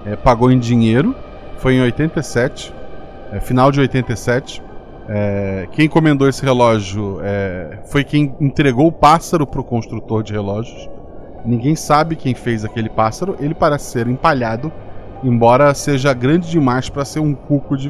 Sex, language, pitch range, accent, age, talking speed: male, Portuguese, 110-140 Hz, Brazilian, 20-39, 155 wpm